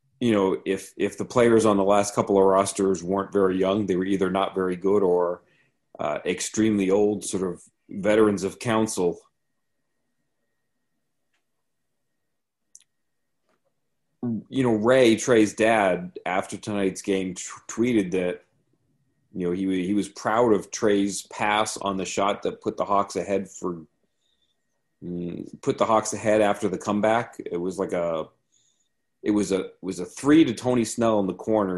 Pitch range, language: 95-110 Hz, English